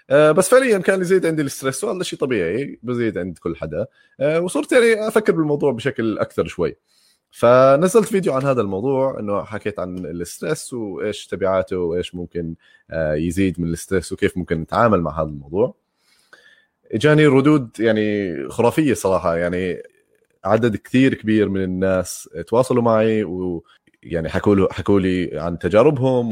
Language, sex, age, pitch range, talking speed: Arabic, male, 20-39, 90-145 Hz, 135 wpm